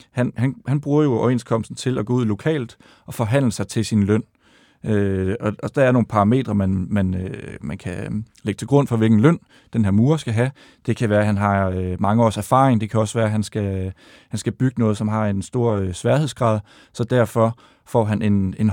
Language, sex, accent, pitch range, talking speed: Danish, male, native, 105-125 Hz, 225 wpm